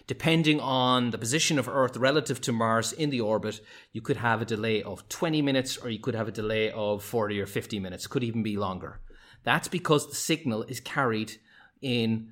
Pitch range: 110-145 Hz